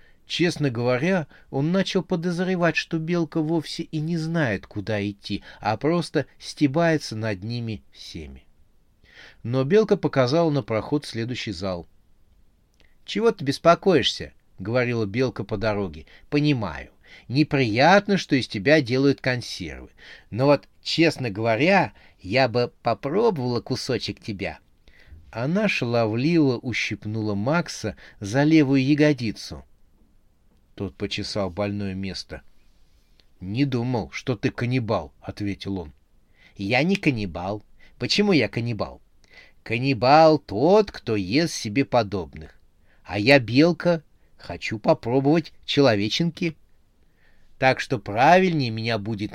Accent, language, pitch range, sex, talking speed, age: native, Russian, 100-150 Hz, male, 110 wpm, 30-49